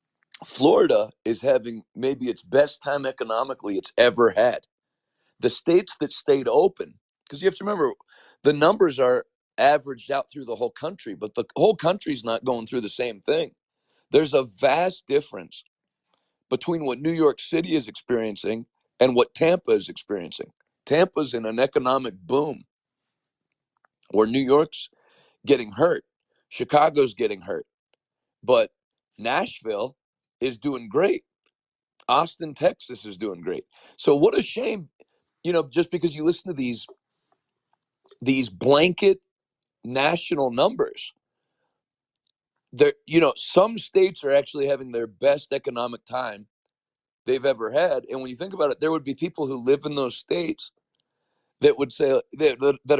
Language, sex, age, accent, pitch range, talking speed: English, male, 40-59, American, 130-215 Hz, 145 wpm